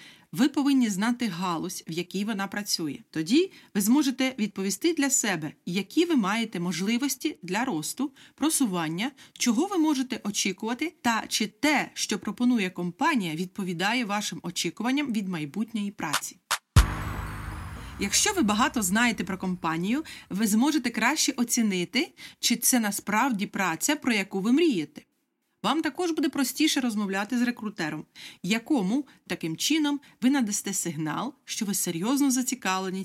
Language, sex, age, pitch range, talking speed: Ukrainian, female, 40-59, 180-265 Hz, 130 wpm